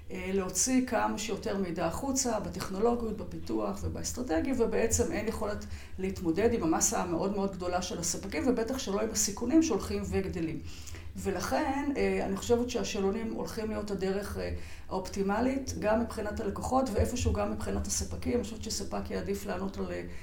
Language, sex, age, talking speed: Hebrew, female, 40-59, 135 wpm